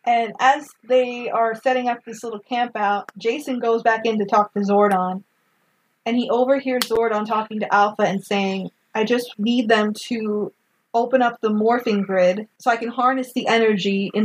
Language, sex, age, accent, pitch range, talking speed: English, female, 20-39, American, 200-240 Hz, 180 wpm